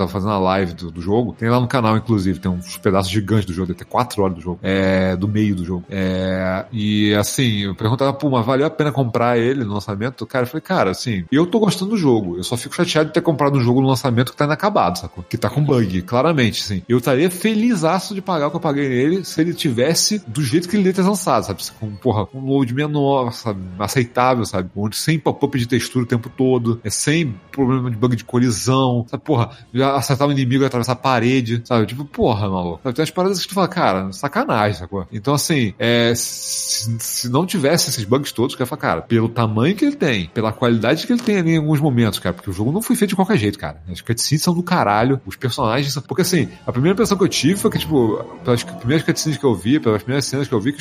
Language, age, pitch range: Portuguese, 30-49, 110-150 Hz